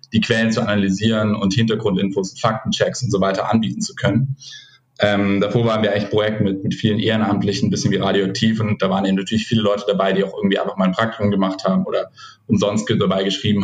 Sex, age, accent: male, 10-29, German